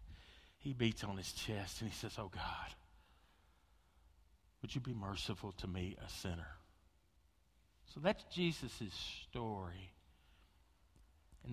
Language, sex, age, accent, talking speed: English, male, 50-69, American, 120 wpm